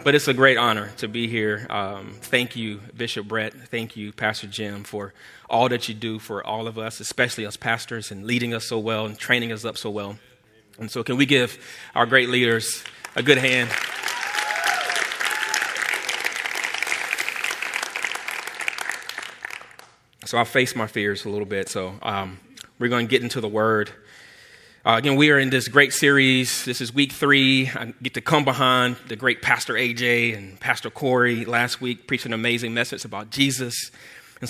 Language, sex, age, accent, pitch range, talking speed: English, male, 30-49, American, 110-130 Hz, 175 wpm